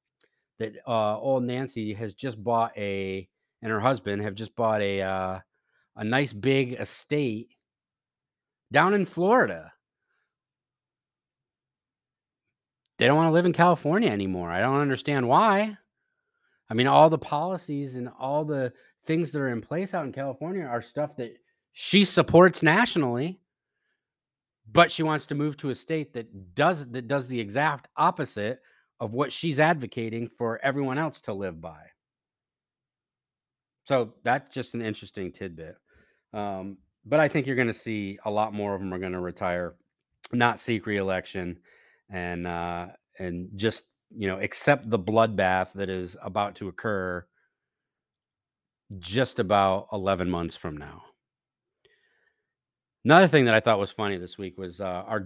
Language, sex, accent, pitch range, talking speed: English, male, American, 100-145 Hz, 150 wpm